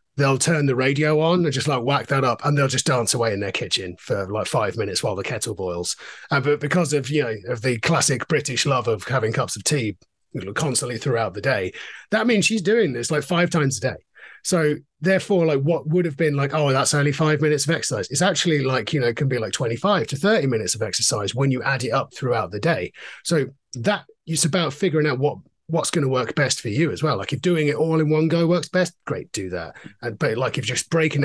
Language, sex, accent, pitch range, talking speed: English, male, British, 135-165 Hz, 250 wpm